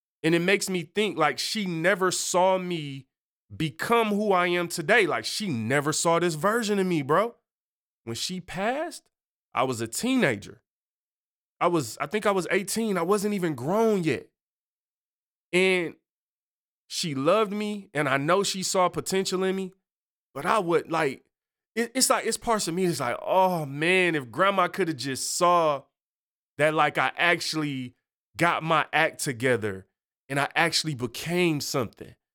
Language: English